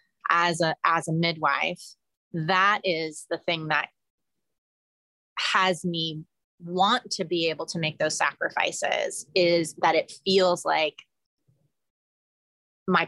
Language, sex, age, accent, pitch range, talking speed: English, female, 30-49, American, 165-195 Hz, 120 wpm